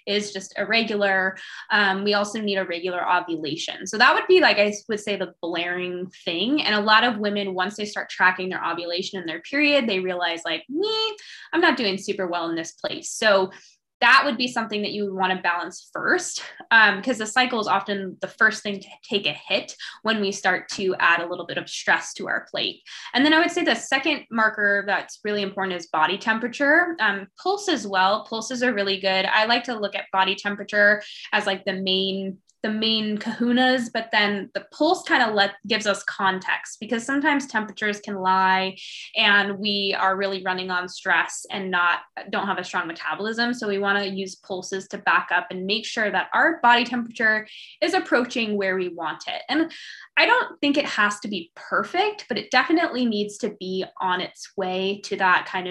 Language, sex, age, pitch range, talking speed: English, female, 10-29, 190-235 Hz, 205 wpm